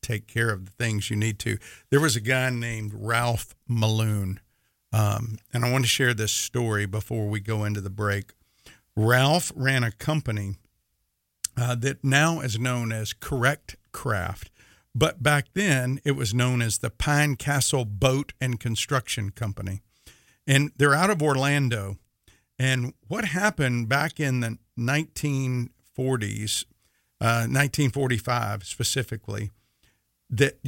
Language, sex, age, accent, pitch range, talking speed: English, male, 50-69, American, 115-145 Hz, 140 wpm